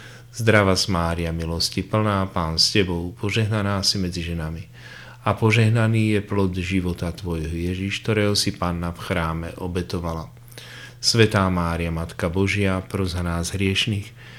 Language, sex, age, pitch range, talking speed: Slovak, male, 40-59, 85-115 Hz, 135 wpm